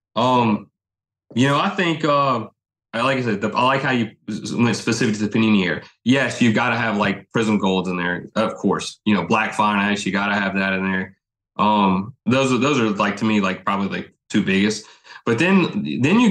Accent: American